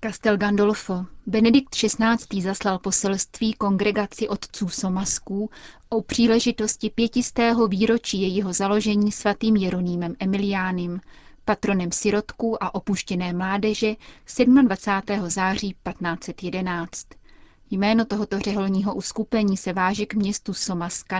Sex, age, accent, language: female, 30-49, native, Czech